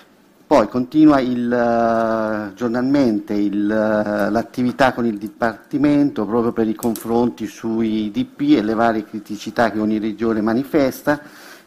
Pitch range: 110-130 Hz